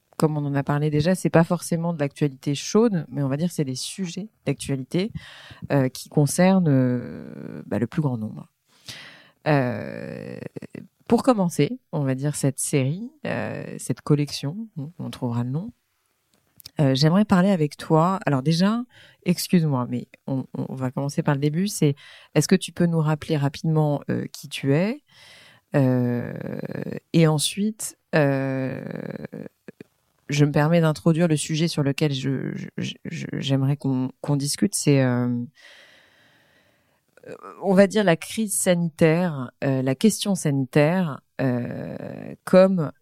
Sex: female